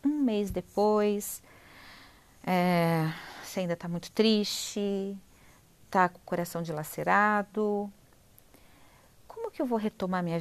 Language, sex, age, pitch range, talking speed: Portuguese, female, 40-59, 145-205 Hz, 115 wpm